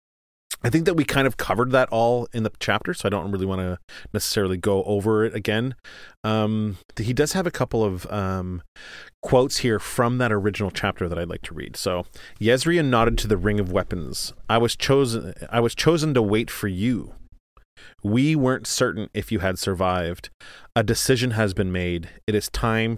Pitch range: 95-115 Hz